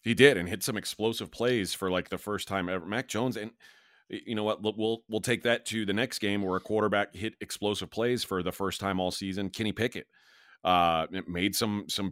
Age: 30-49